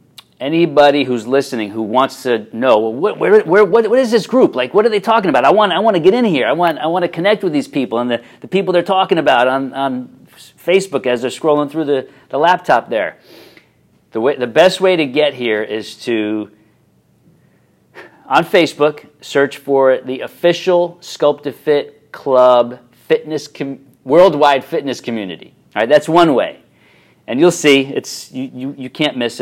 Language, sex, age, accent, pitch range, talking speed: English, male, 40-59, American, 125-165 Hz, 195 wpm